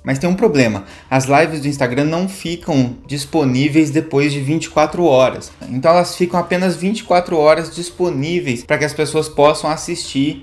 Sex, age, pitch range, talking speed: male, 20-39, 135-170 Hz, 160 wpm